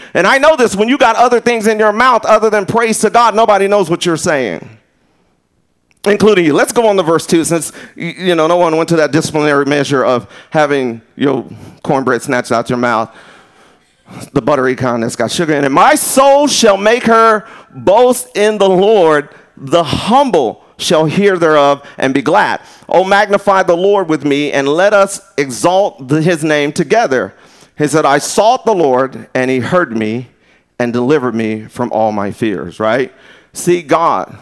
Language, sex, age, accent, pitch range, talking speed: English, male, 40-59, American, 140-195 Hz, 185 wpm